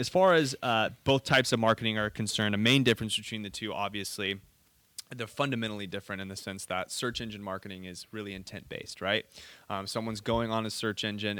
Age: 20-39